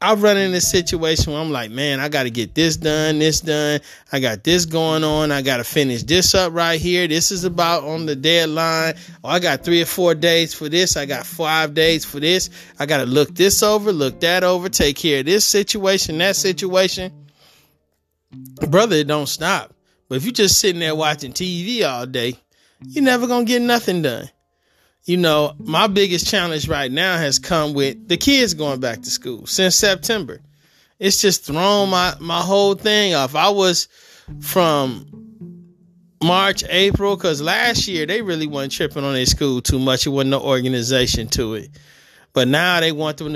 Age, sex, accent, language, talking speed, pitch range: 20-39, male, American, English, 195 wpm, 140-185 Hz